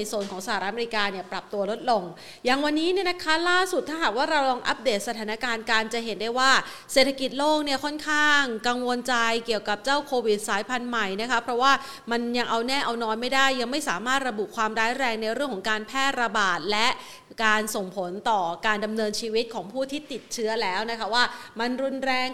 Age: 30-49